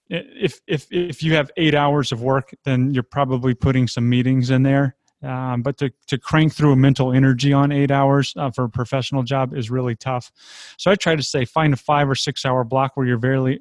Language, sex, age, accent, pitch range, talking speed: English, male, 30-49, American, 125-145 Hz, 230 wpm